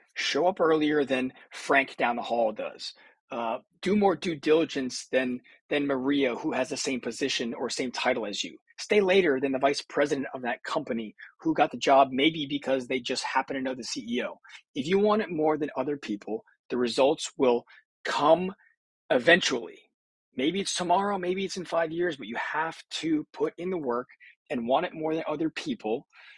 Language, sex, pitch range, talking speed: English, male, 130-160 Hz, 195 wpm